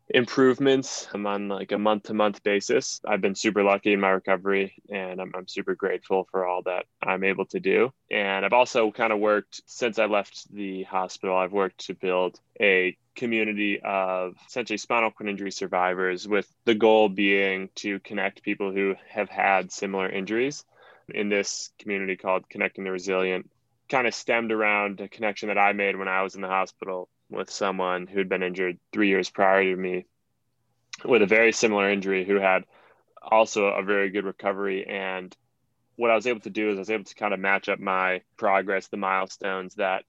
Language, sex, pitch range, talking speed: English, male, 95-110 Hz, 190 wpm